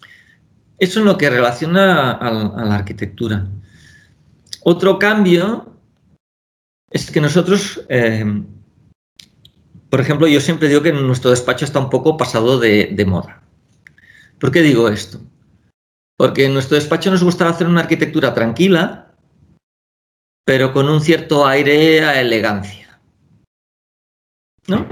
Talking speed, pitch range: 130 wpm, 110-165 Hz